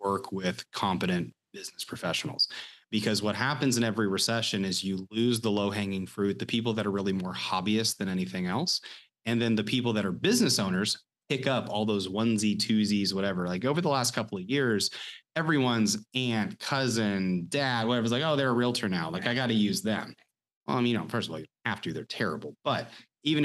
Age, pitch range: 30-49, 100-125 Hz